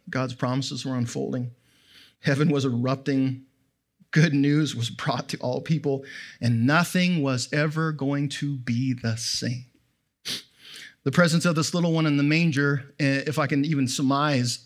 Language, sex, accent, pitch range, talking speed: English, male, American, 140-195 Hz, 150 wpm